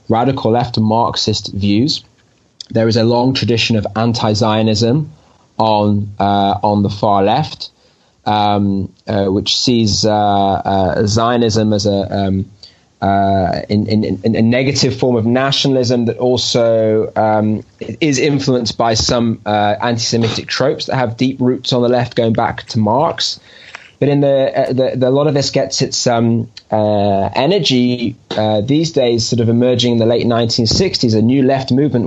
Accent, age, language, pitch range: British, 20-39, English, 105-125 Hz